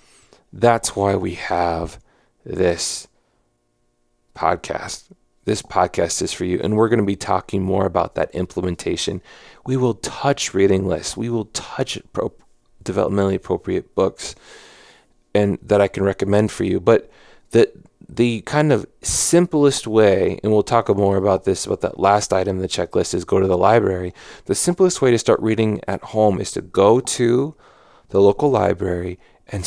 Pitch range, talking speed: 90-115 Hz, 165 wpm